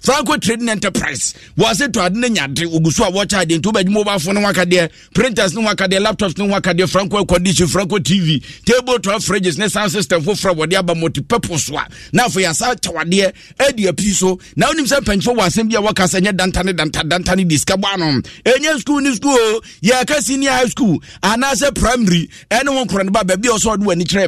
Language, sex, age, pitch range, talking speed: English, male, 50-69, 175-225 Hz, 180 wpm